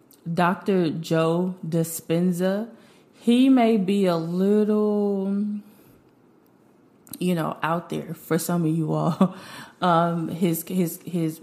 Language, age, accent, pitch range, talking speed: English, 20-39, American, 160-195 Hz, 110 wpm